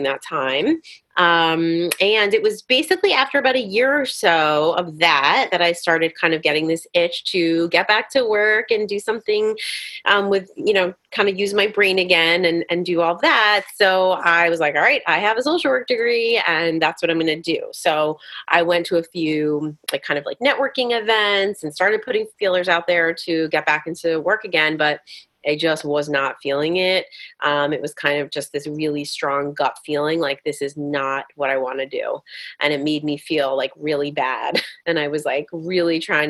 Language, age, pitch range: English, 30-49, 150-200 Hz